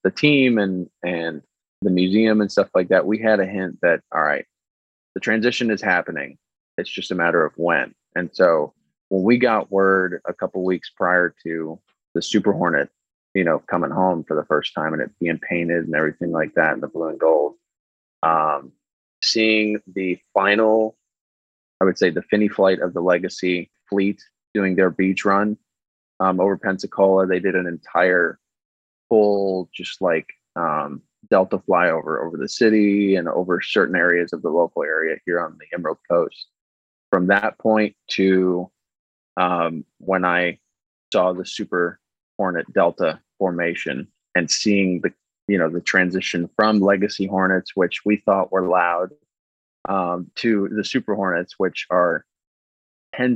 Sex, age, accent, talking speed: male, 20-39, American, 165 wpm